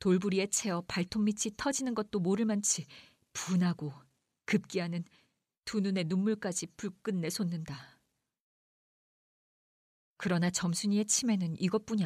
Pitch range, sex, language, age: 175-240 Hz, female, Korean, 40-59